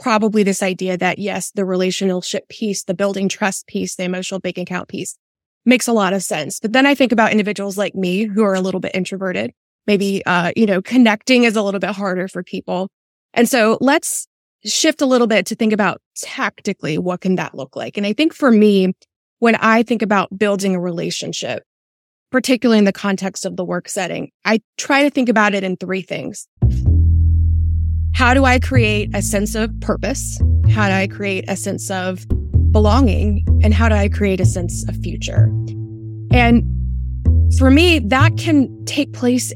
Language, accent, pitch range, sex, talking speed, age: English, American, 145-210 Hz, female, 190 wpm, 20-39